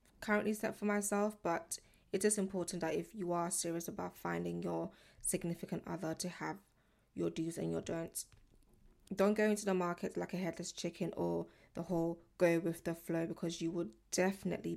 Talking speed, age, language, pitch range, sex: 185 wpm, 20-39, English, 170-195 Hz, female